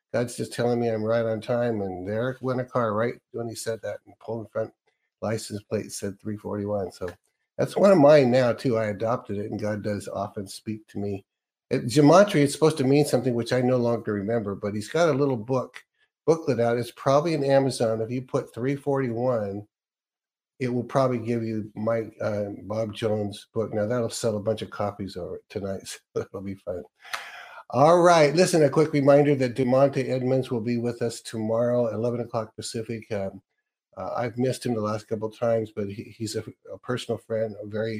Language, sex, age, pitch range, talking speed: English, male, 50-69, 105-125 Hz, 210 wpm